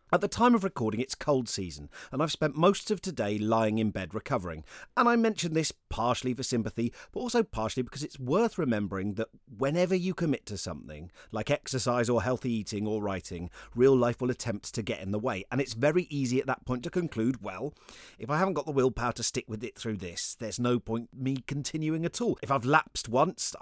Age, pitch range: 40-59, 110-155 Hz